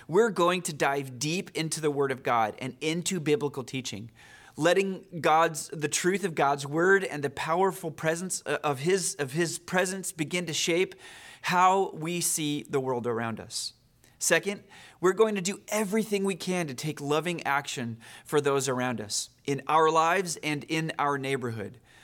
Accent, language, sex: American, English, male